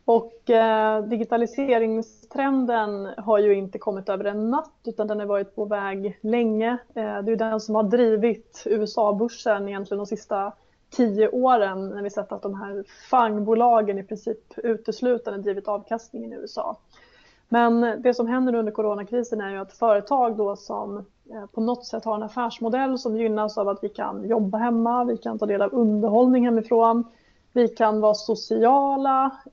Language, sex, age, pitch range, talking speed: Swedish, female, 30-49, 210-235 Hz, 170 wpm